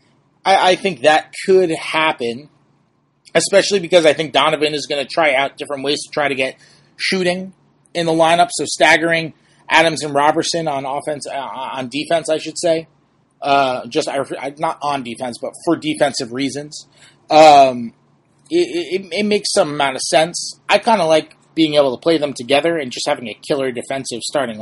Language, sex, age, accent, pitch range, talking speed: English, male, 30-49, American, 135-165 Hz, 180 wpm